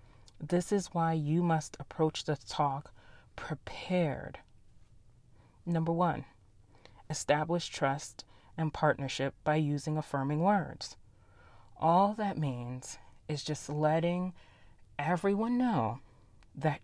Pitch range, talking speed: 115-160 Hz, 100 wpm